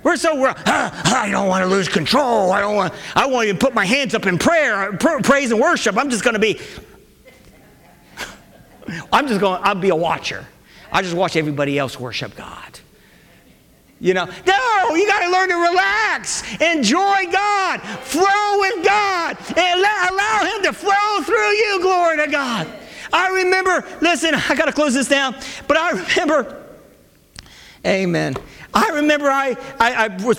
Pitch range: 220-315 Hz